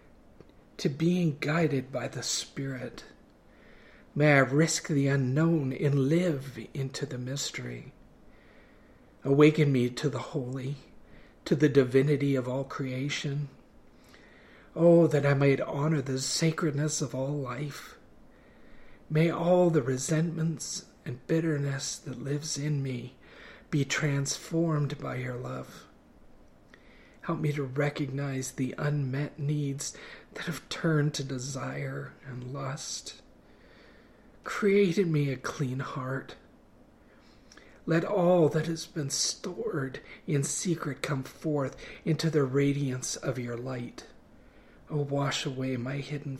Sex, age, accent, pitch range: male, 50-69, American, 135-155 Hz